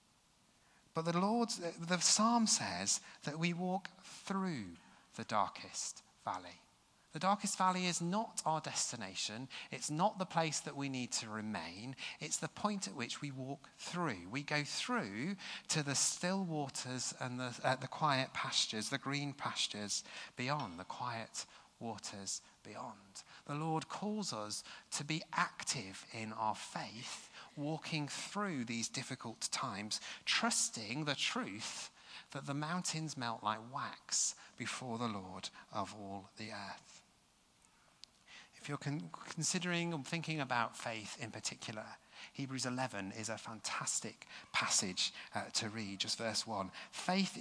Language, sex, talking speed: English, male, 140 wpm